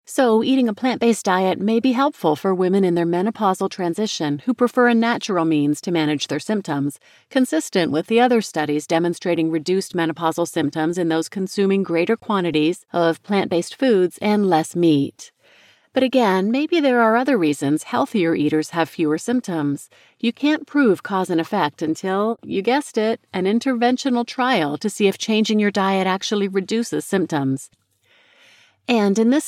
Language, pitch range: English, 165-230 Hz